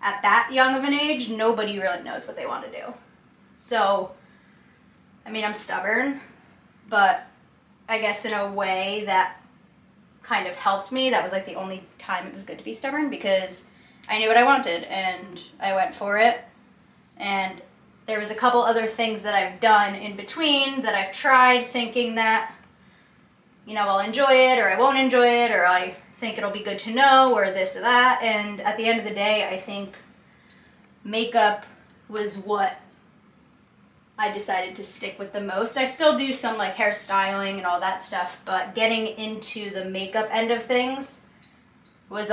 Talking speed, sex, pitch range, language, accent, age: 185 wpm, female, 195-235 Hz, English, American, 10-29